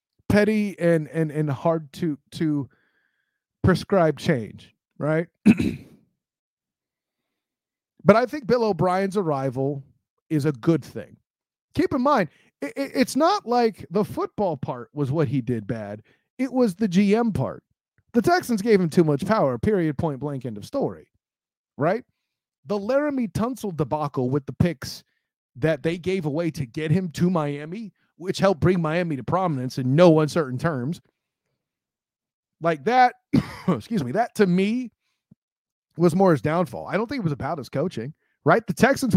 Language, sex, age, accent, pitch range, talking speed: English, male, 30-49, American, 145-205 Hz, 160 wpm